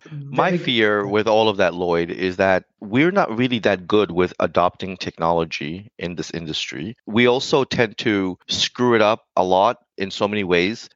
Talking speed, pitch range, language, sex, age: 180 wpm, 90-110 Hz, English, male, 30-49